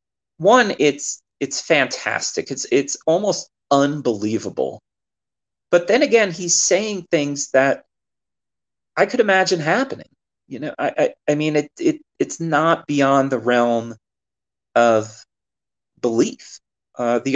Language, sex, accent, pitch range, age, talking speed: English, male, American, 105-150 Hz, 30-49, 125 wpm